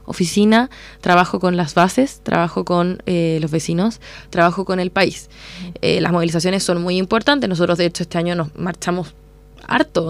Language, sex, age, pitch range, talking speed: Spanish, female, 20-39, 185-245 Hz, 165 wpm